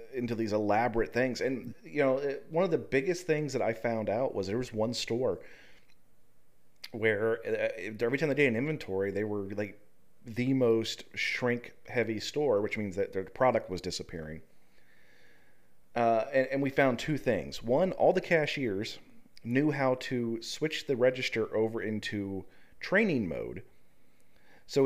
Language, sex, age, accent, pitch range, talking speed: English, male, 40-59, American, 105-140 Hz, 155 wpm